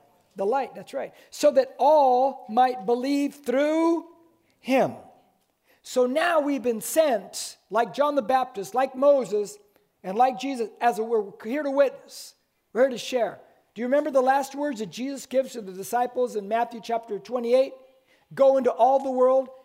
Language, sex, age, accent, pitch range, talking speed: English, male, 50-69, American, 225-270 Hz, 170 wpm